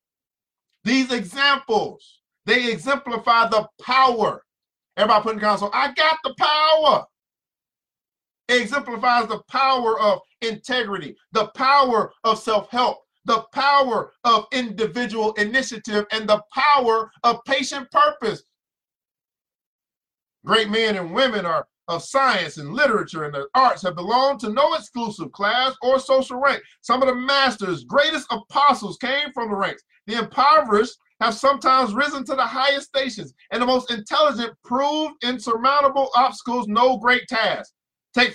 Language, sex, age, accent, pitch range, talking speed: English, male, 40-59, American, 220-270 Hz, 135 wpm